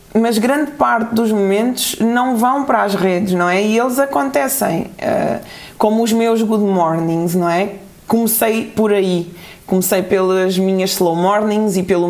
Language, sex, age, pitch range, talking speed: Portuguese, female, 20-39, 185-235 Hz, 160 wpm